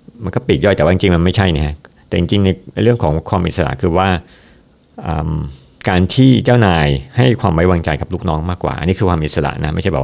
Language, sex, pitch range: Thai, male, 80-95 Hz